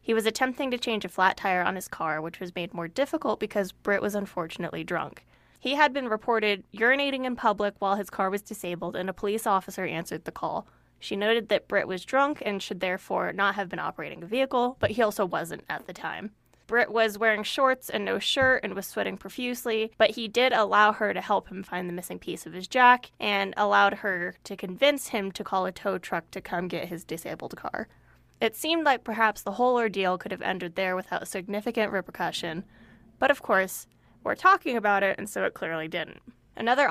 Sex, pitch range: female, 185-225 Hz